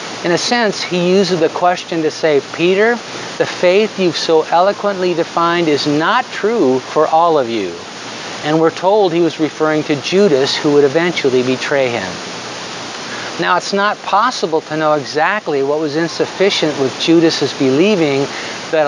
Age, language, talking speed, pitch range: 50-69, English, 160 wpm, 145-185 Hz